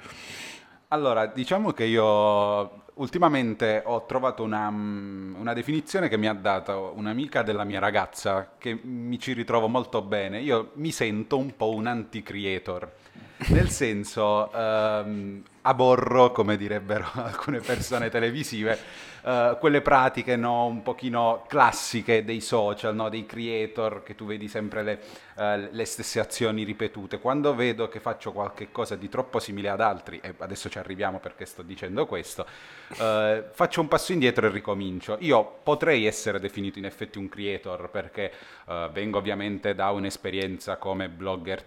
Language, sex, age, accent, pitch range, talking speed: Italian, male, 30-49, native, 95-115 Hz, 145 wpm